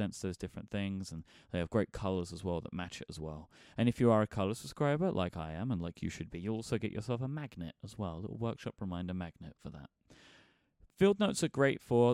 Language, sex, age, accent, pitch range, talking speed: English, male, 30-49, British, 90-120 Hz, 245 wpm